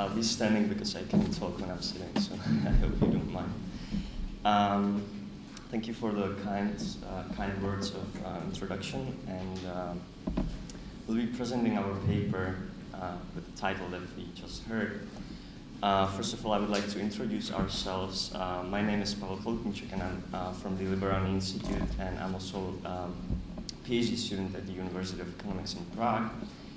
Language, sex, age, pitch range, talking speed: Italian, male, 20-39, 95-105 Hz, 175 wpm